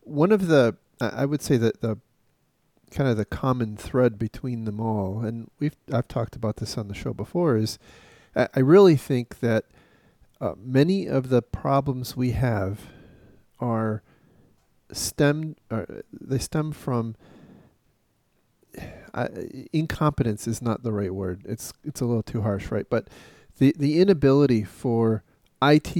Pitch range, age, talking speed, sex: 110-130 Hz, 40-59, 145 wpm, male